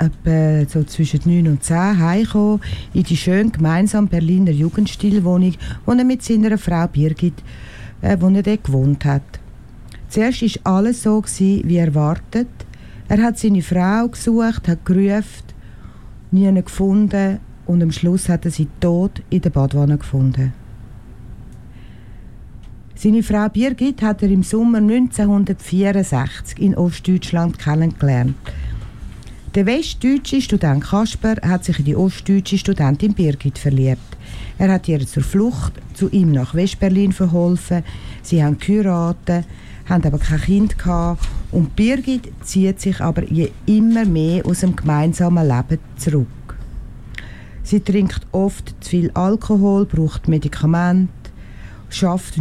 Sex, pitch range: female, 155-200 Hz